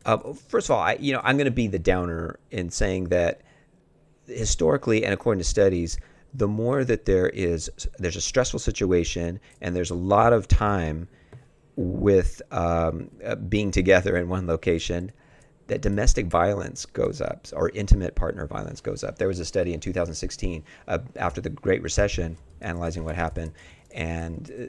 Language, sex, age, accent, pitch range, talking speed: English, male, 40-59, American, 85-105 Hz, 170 wpm